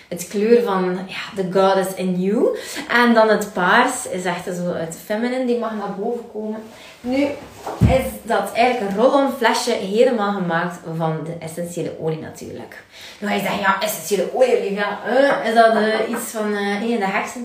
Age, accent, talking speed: 20-39, Dutch, 180 wpm